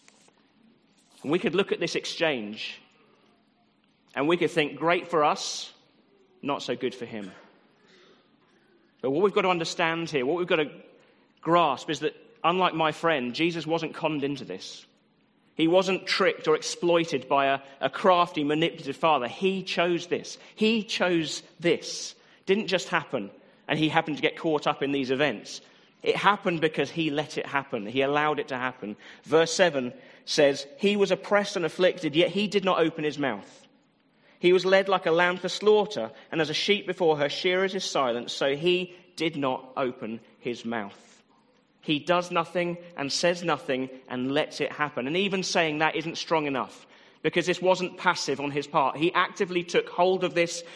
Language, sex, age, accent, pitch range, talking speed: English, male, 40-59, British, 140-180 Hz, 180 wpm